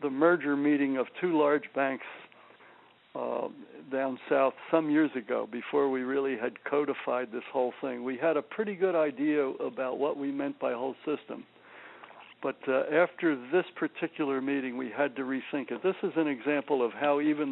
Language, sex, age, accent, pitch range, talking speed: English, male, 60-79, American, 130-155 Hz, 180 wpm